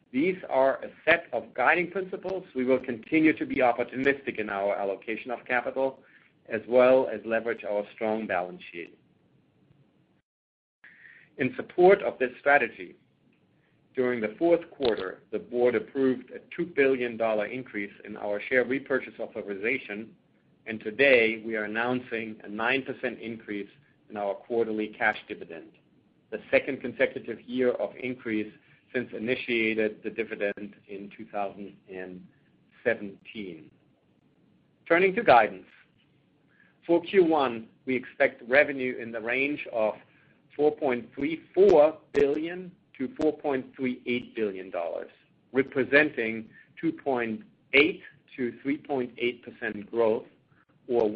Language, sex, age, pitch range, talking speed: English, male, 50-69, 110-140 Hz, 110 wpm